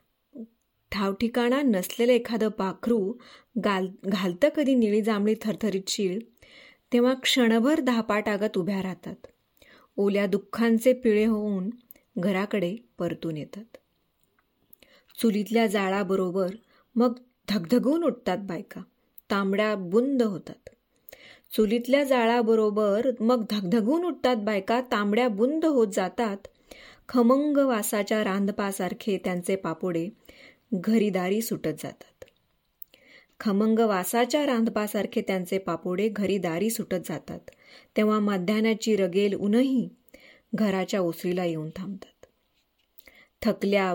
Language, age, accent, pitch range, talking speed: Marathi, 20-39, native, 190-240 Hz, 75 wpm